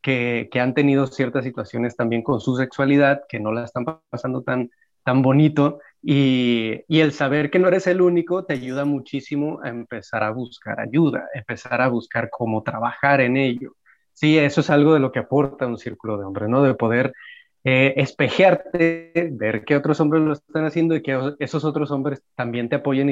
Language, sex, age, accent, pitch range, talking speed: Spanish, male, 30-49, Mexican, 125-150 Hz, 190 wpm